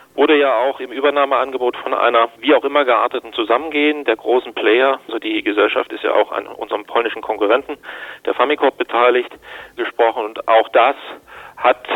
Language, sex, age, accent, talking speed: German, male, 40-59, German, 165 wpm